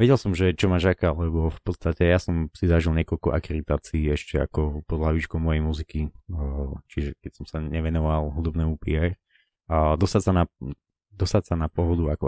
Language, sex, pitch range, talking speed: Slovak, male, 80-90 Hz, 160 wpm